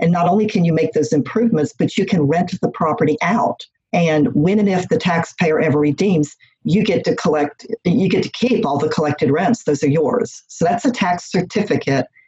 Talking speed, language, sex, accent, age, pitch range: 210 wpm, English, female, American, 50-69, 150-200 Hz